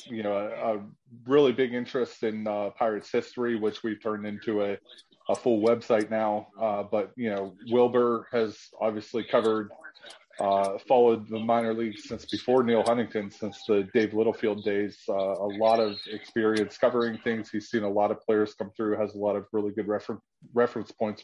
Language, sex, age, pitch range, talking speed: English, male, 20-39, 105-115 Hz, 185 wpm